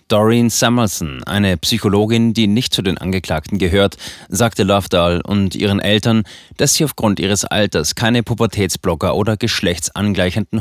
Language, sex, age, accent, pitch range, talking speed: German, male, 30-49, German, 95-115 Hz, 135 wpm